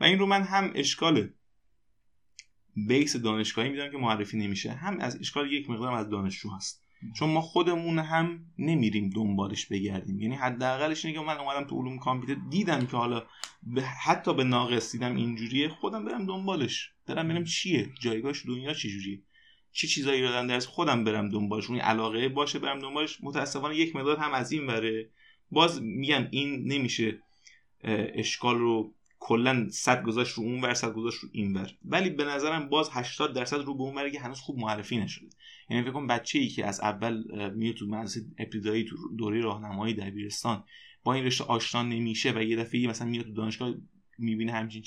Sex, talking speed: male, 175 wpm